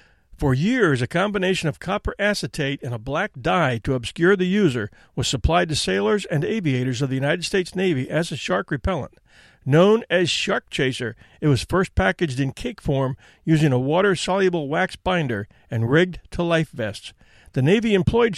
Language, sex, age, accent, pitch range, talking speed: English, male, 50-69, American, 130-185 Hz, 175 wpm